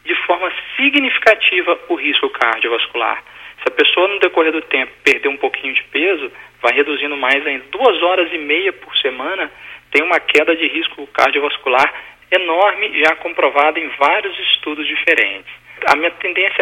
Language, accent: Portuguese, Brazilian